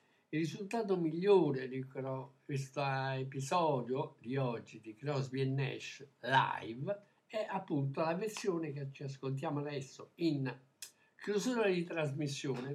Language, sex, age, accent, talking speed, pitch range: Italian, male, 60-79, native, 120 wpm, 135-180 Hz